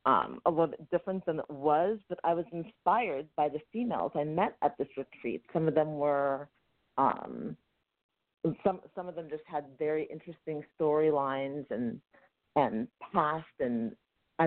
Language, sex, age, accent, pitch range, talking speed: English, female, 40-59, American, 150-175 Hz, 160 wpm